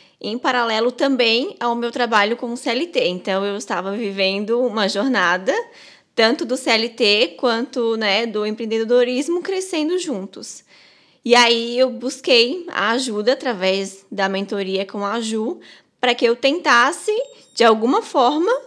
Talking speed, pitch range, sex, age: 135 wpm, 195-265 Hz, female, 10-29